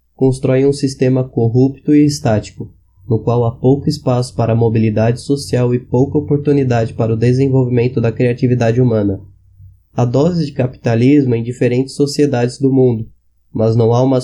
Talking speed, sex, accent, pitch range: 155 wpm, male, Brazilian, 115-135 Hz